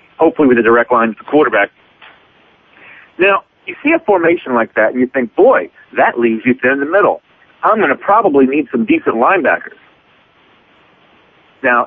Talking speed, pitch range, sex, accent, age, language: 175 wpm, 125-200 Hz, male, American, 40-59, English